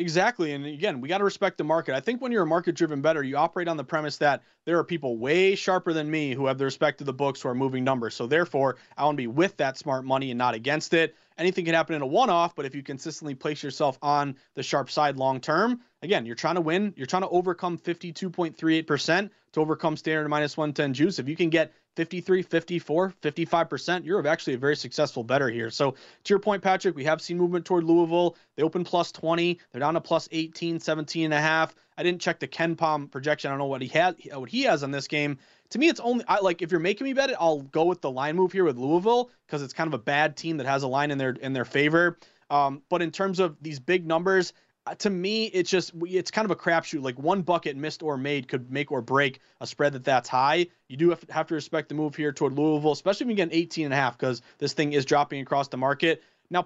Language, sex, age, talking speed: English, male, 30-49, 260 wpm